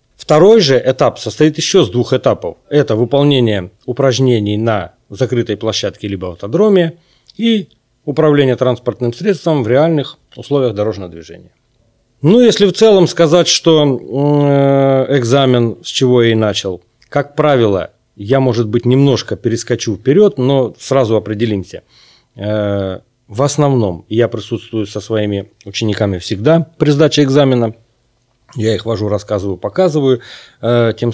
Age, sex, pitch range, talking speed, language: 30-49, male, 110-140 Hz, 130 wpm, Russian